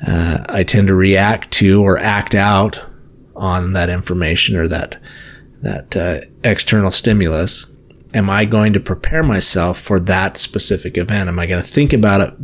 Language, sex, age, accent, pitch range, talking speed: English, male, 30-49, American, 95-110 Hz, 170 wpm